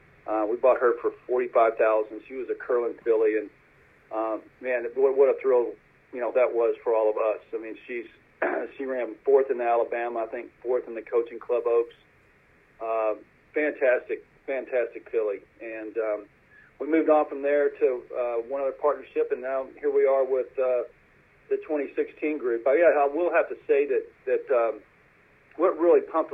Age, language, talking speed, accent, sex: 40-59, English, 185 wpm, American, male